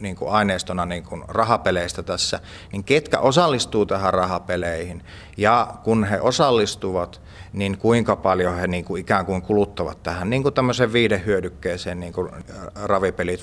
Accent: native